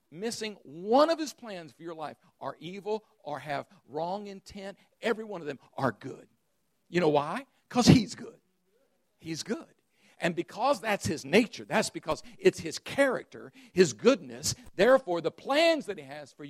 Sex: male